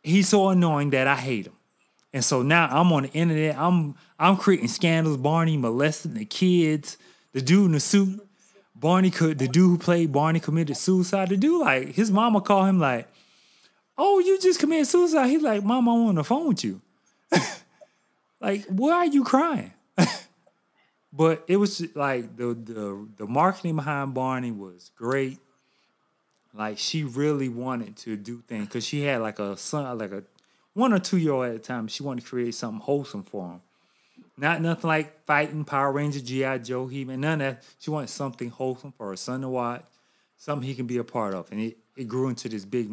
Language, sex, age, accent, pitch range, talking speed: English, male, 30-49, American, 120-175 Hz, 195 wpm